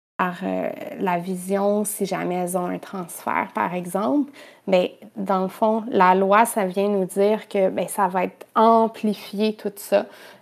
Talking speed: 180 wpm